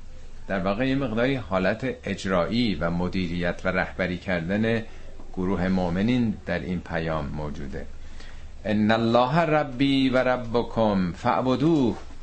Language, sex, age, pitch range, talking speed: Persian, male, 50-69, 85-135 Hz, 105 wpm